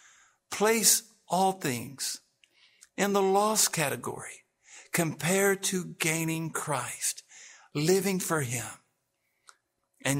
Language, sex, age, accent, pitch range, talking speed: English, male, 60-79, American, 140-200 Hz, 90 wpm